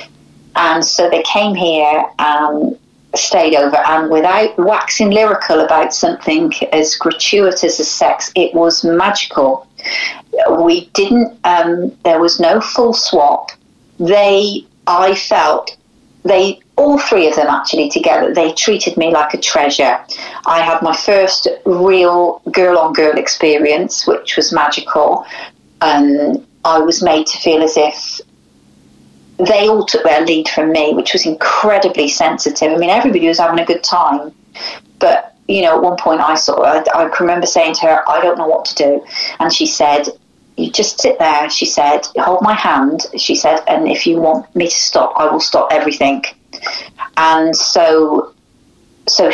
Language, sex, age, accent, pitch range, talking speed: English, female, 40-59, British, 155-195 Hz, 160 wpm